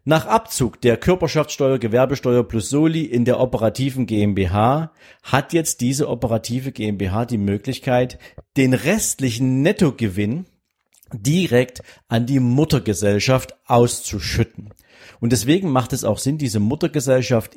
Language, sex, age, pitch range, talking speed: German, male, 50-69, 105-135 Hz, 115 wpm